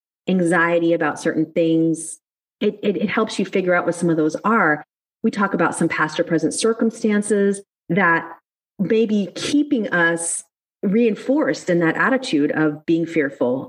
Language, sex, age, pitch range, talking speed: English, female, 30-49, 160-200 Hz, 160 wpm